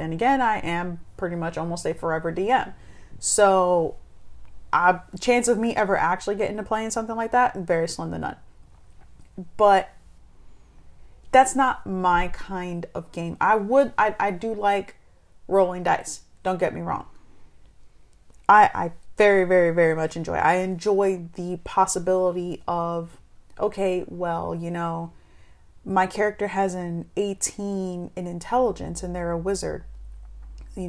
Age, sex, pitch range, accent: 30-49, female, 170-200 Hz, American